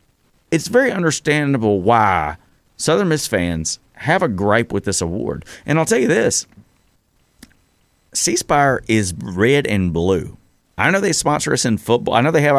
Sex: male